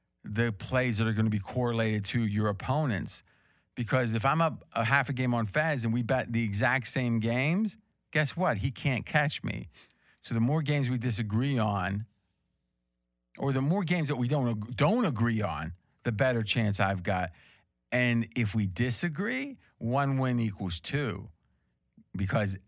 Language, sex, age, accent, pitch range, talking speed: English, male, 40-59, American, 100-125 Hz, 175 wpm